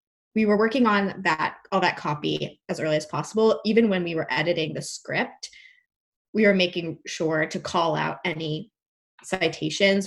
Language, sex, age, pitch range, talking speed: English, female, 20-39, 165-210 Hz, 165 wpm